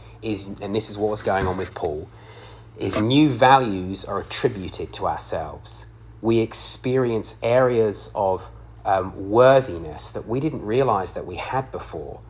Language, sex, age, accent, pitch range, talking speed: English, male, 30-49, British, 105-115 Hz, 145 wpm